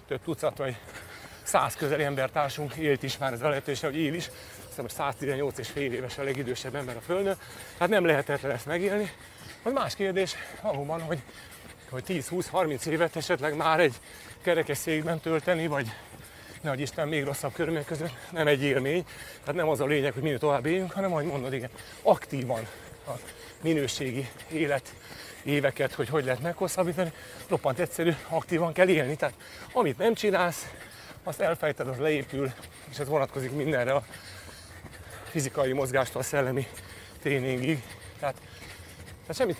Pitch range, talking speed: 130-165 Hz, 150 wpm